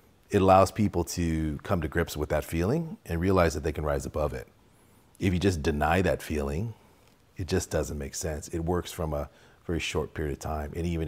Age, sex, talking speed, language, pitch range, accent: 40-59, male, 215 wpm, English, 75-85 Hz, American